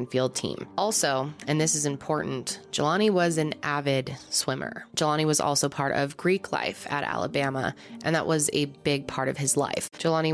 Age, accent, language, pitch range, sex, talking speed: 20-39, American, English, 135-170 Hz, female, 180 wpm